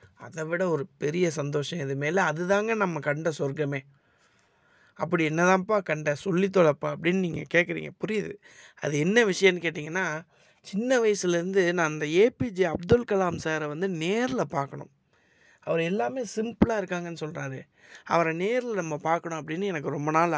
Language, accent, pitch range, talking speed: Tamil, native, 150-190 Hz, 140 wpm